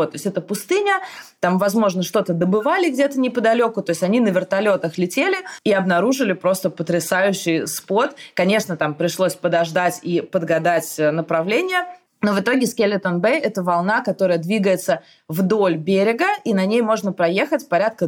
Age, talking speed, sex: 20-39, 155 wpm, female